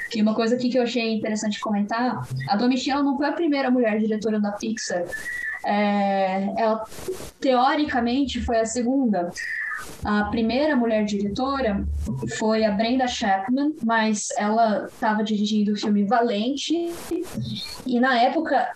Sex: female